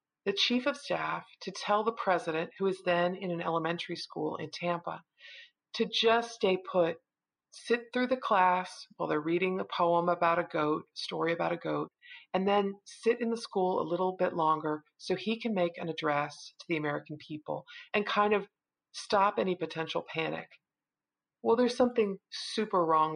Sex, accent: female, American